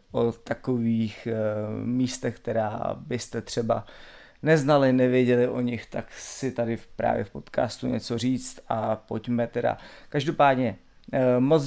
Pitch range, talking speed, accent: 120-135 Hz, 120 wpm, native